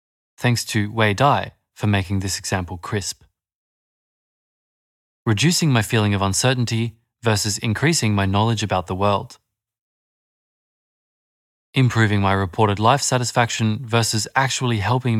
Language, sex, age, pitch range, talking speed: English, male, 20-39, 100-125 Hz, 115 wpm